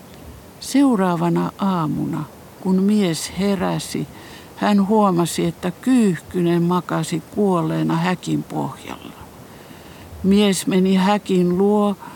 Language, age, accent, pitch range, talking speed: Finnish, 60-79, native, 165-205 Hz, 85 wpm